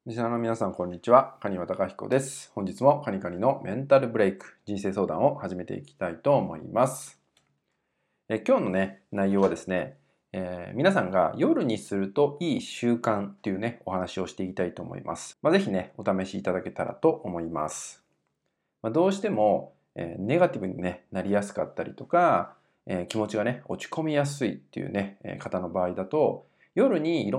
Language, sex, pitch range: Japanese, male, 95-135 Hz